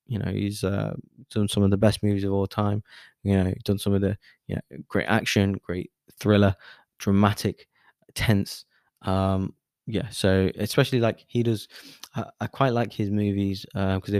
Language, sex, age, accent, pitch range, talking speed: English, male, 20-39, British, 95-110 Hz, 175 wpm